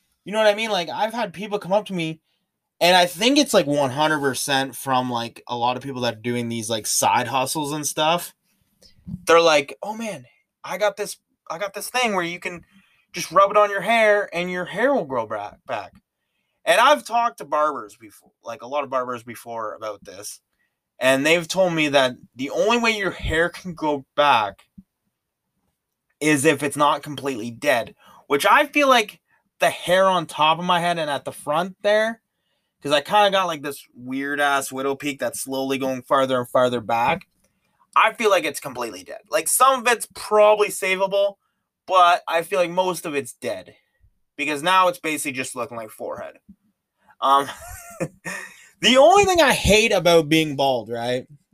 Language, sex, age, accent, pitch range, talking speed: English, male, 20-39, American, 140-205 Hz, 190 wpm